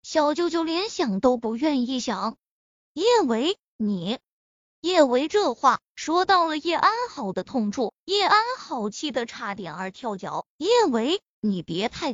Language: Chinese